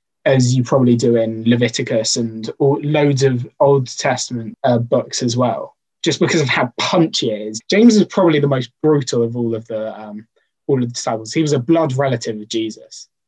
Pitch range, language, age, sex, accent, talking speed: 125-165 Hz, English, 20-39, male, British, 205 wpm